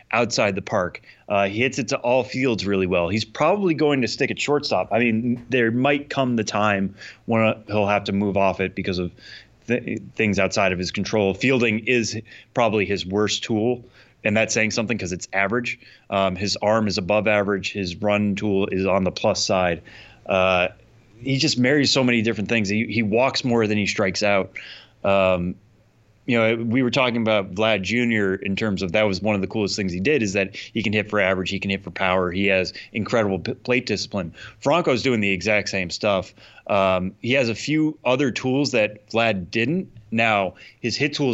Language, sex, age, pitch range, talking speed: English, male, 30-49, 95-115 Hz, 205 wpm